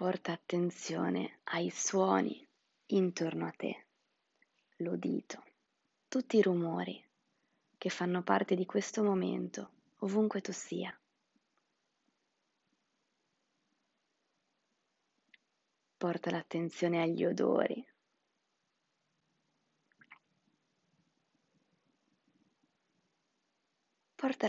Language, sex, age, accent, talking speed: Italian, female, 20-39, native, 60 wpm